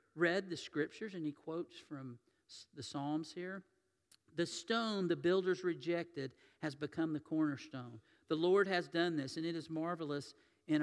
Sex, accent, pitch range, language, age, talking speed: male, American, 155-205 Hz, English, 50-69, 160 wpm